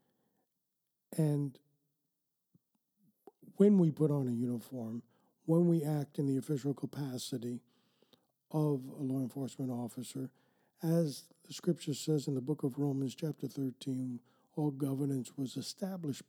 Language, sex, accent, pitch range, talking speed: English, male, American, 130-160 Hz, 125 wpm